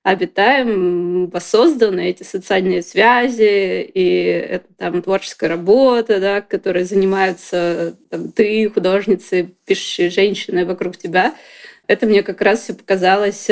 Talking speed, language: 110 wpm, Russian